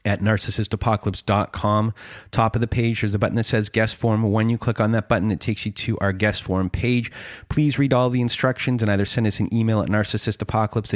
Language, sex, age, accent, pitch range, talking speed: English, male, 30-49, American, 100-120 Hz, 220 wpm